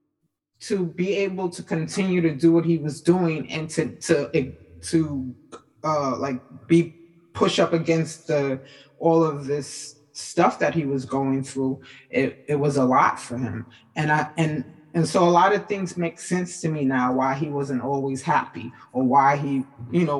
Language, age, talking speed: English, 20-39, 185 wpm